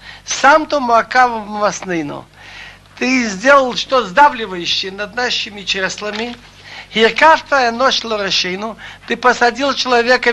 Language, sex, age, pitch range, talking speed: Russian, male, 60-79, 210-255 Hz, 100 wpm